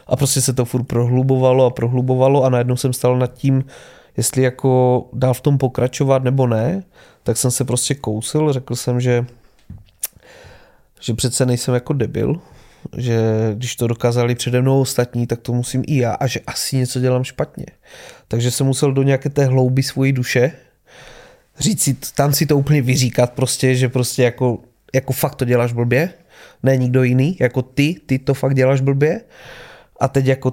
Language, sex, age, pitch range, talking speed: Czech, male, 20-39, 120-135 Hz, 175 wpm